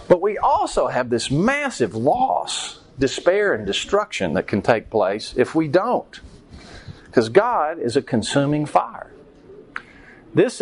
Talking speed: 135 wpm